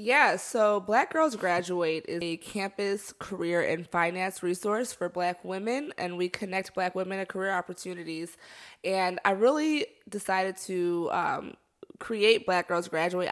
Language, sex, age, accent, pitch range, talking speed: English, female, 20-39, American, 175-200 Hz, 150 wpm